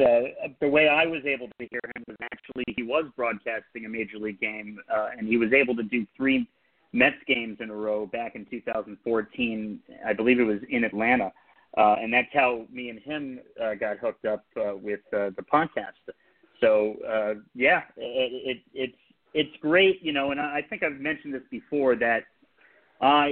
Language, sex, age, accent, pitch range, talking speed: English, male, 30-49, American, 115-140 Hz, 190 wpm